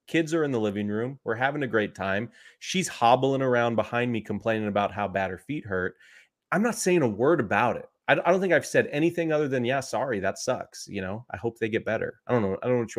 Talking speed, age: 265 wpm, 30-49